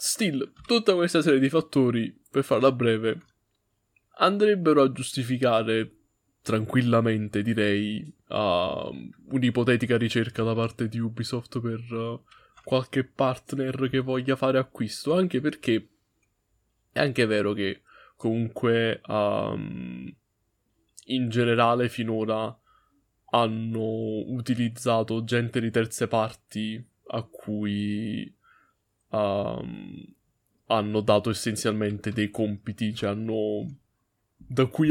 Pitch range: 105-125 Hz